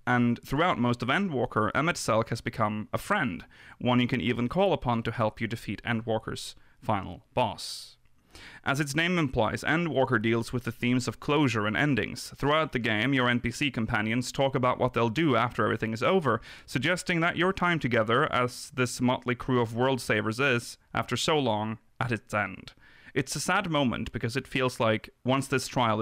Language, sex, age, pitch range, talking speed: English, male, 30-49, 115-140 Hz, 190 wpm